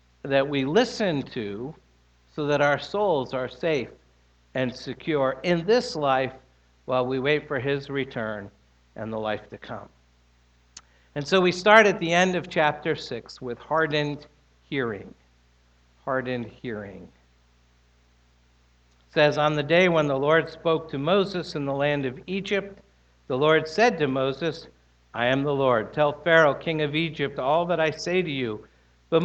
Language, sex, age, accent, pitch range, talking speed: English, male, 60-79, American, 125-180 Hz, 160 wpm